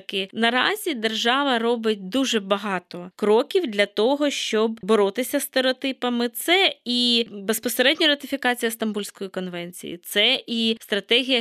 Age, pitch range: 20-39, 205-240 Hz